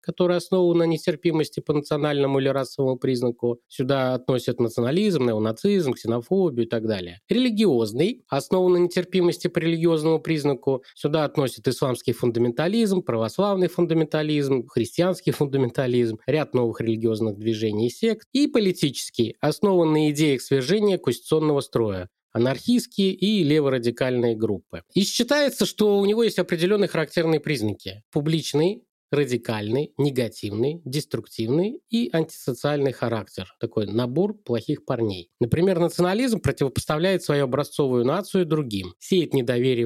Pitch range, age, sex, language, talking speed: 120-175 Hz, 20-39, male, Russian, 120 wpm